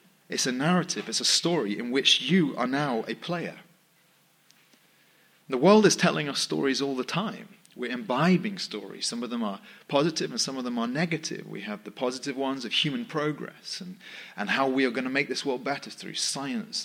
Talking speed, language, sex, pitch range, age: 205 wpm, English, male, 135-200 Hz, 30-49